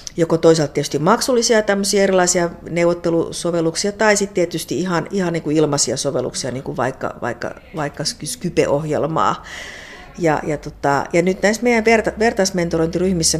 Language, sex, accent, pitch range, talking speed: Finnish, female, native, 145-175 Hz, 135 wpm